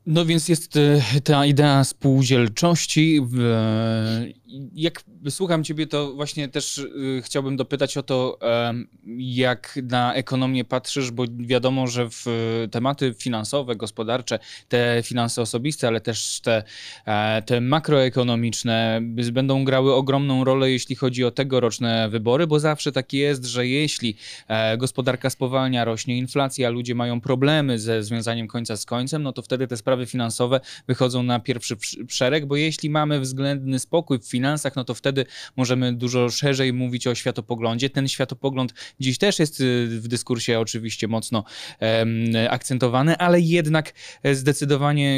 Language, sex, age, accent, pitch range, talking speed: Polish, male, 20-39, native, 120-140 Hz, 135 wpm